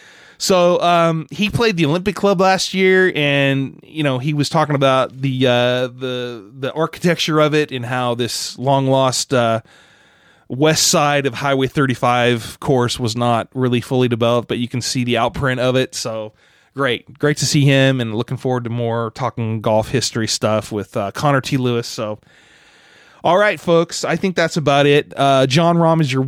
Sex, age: male, 20-39